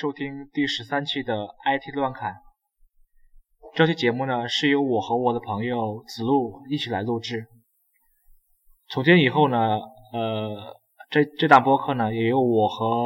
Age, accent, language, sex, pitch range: 20-39, native, Chinese, male, 115-150 Hz